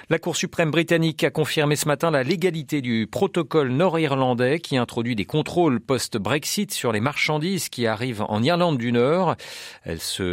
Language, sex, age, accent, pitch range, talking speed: French, male, 40-59, French, 115-160 Hz, 165 wpm